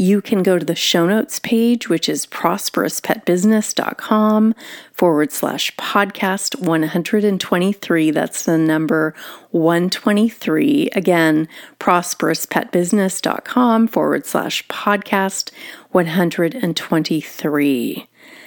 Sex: female